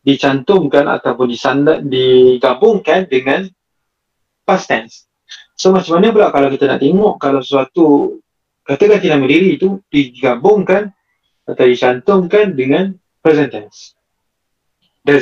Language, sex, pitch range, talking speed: Malay, male, 130-175 Hz, 110 wpm